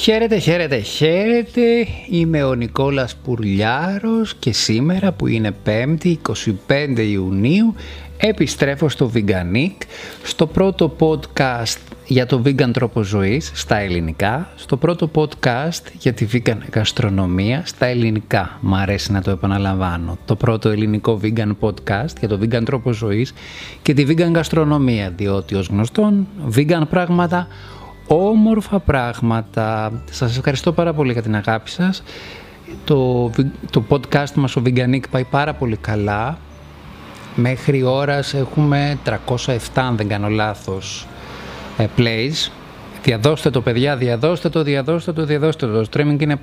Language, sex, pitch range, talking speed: Greek, male, 110-150 Hz, 130 wpm